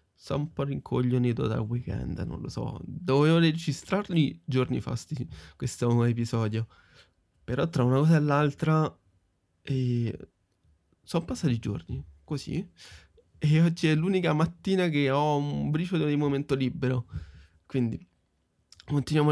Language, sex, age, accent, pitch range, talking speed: Italian, male, 20-39, native, 120-155 Hz, 130 wpm